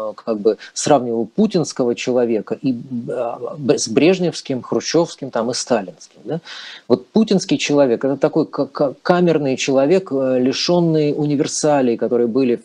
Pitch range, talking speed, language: 130-175 Hz, 115 wpm, Russian